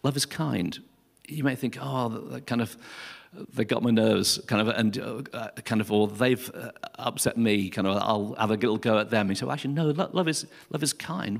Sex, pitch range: male, 110-140 Hz